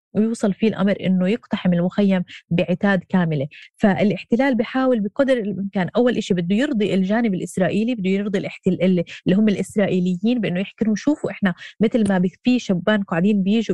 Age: 20-39